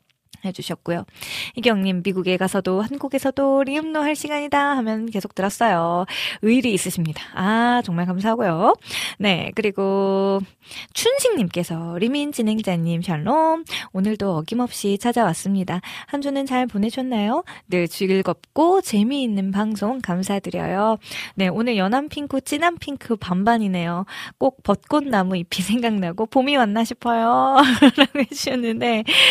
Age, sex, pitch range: 20-39, female, 180-240 Hz